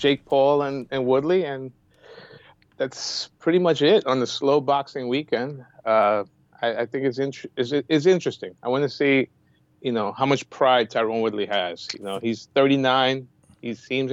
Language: English